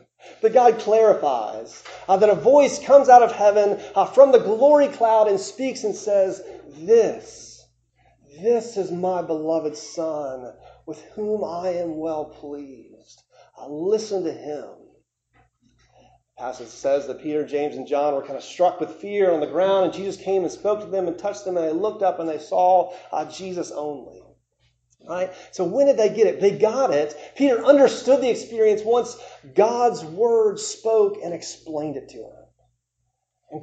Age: 30-49